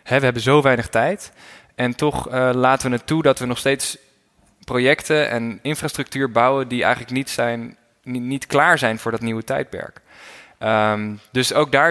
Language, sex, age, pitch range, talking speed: Dutch, male, 20-39, 110-130 Hz, 180 wpm